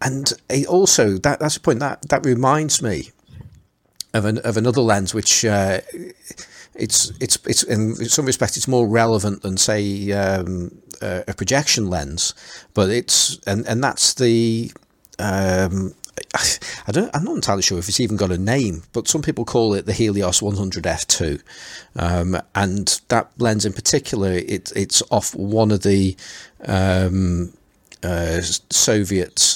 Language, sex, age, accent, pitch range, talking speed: English, male, 40-59, British, 90-110 Hz, 160 wpm